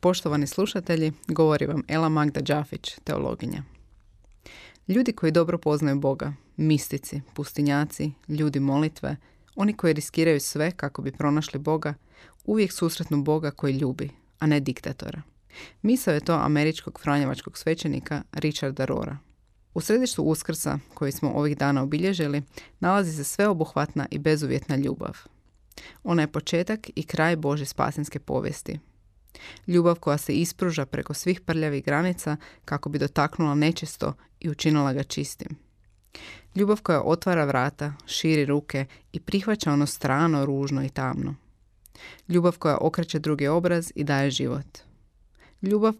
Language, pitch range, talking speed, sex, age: Croatian, 140-165 Hz, 130 wpm, female, 30-49